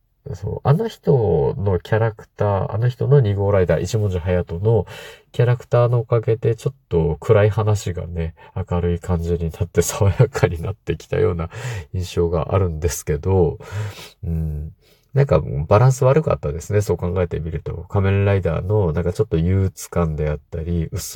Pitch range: 85-110 Hz